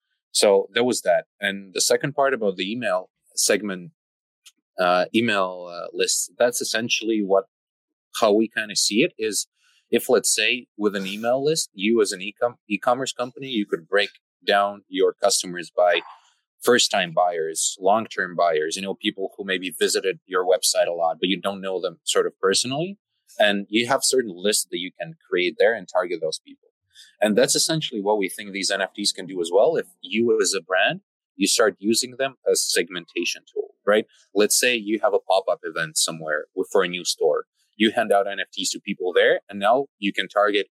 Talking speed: 195 wpm